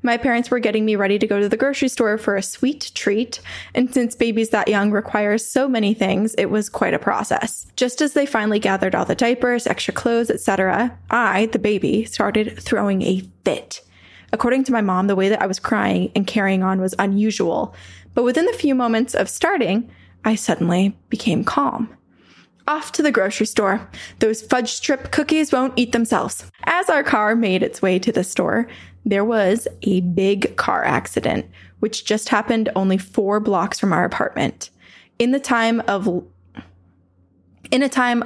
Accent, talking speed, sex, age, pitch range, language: American, 180 wpm, female, 20-39, 195-235 Hz, English